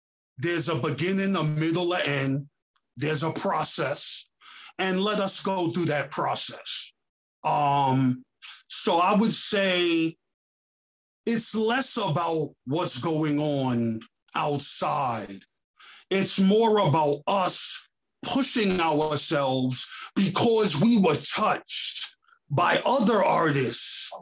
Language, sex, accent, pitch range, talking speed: English, male, American, 155-215 Hz, 105 wpm